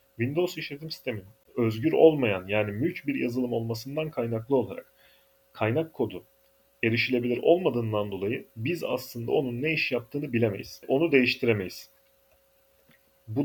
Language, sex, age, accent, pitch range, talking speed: Turkish, male, 40-59, native, 105-130 Hz, 120 wpm